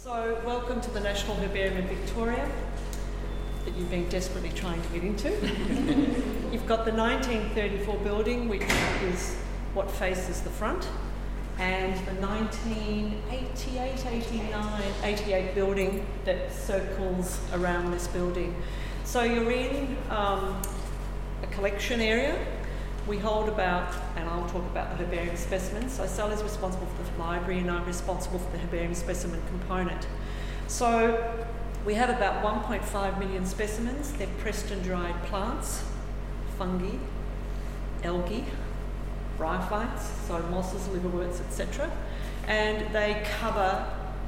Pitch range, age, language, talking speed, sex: 175-215 Hz, 40-59, English, 125 wpm, female